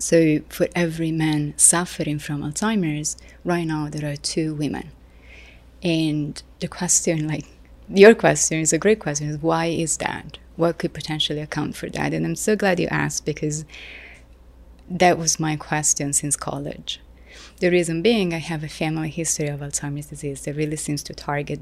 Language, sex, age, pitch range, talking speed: English, female, 30-49, 145-165 Hz, 170 wpm